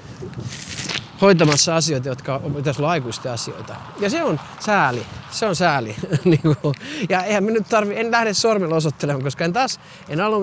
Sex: male